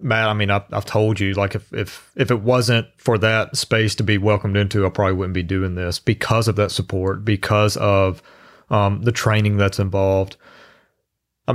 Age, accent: 30-49, American